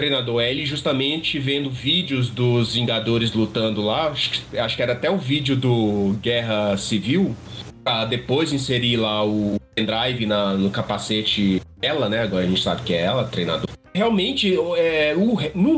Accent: Brazilian